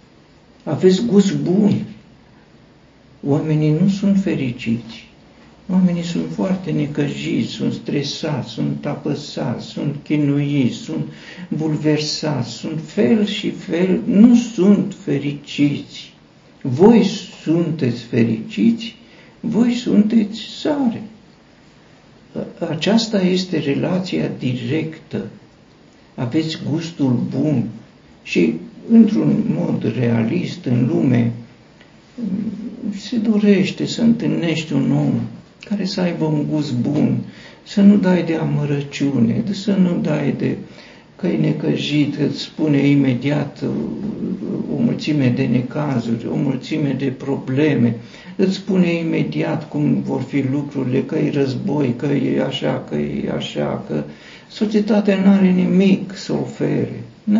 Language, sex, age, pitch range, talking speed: Romanian, male, 60-79, 140-200 Hz, 110 wpm